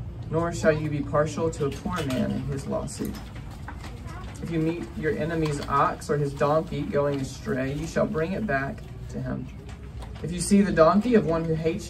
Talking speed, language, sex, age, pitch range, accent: 195 wpm, English, male, 20-39, 125-155 Hz, American